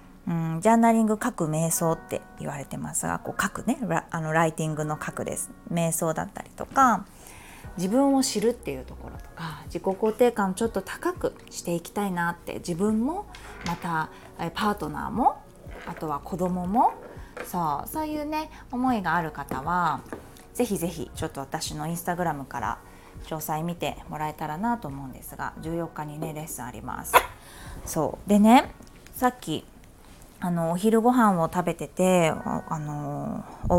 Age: 20-39